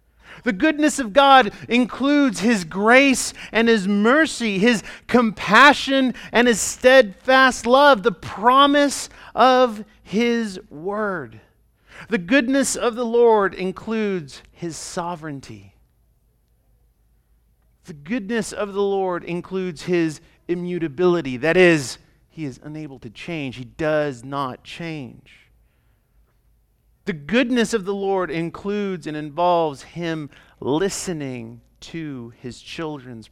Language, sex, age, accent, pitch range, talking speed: English, male, 40-59, American, 155-235 Hz, 110 wpm